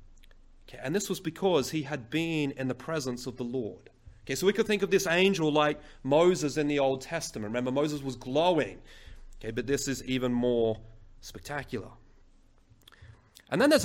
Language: English